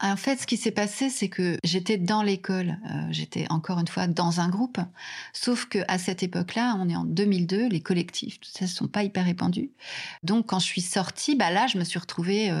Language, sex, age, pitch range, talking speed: French, female, 30-49, 170-205 Hz, 220 wpm